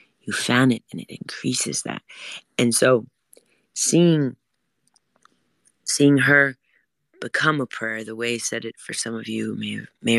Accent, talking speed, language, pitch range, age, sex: American, 155 wpm, English, 110-125 Hz, 30-49, female